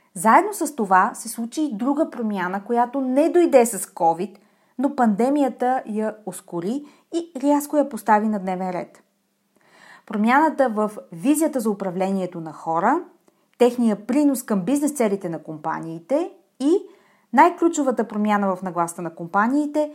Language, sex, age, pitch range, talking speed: Bulgarian, female, 30-49, 195-275 Hz, 135 wpm